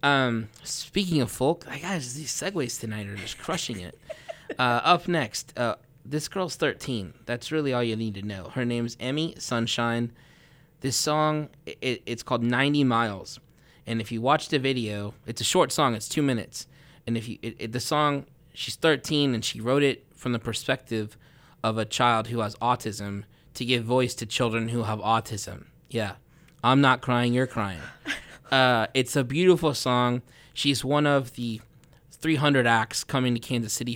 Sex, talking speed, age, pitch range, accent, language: male, 180 wpm, 20-39, 115-145 Hz, American, English